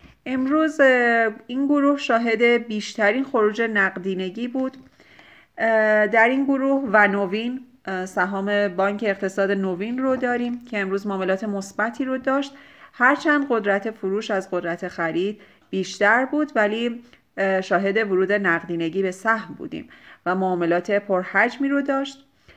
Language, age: Persian, 30-49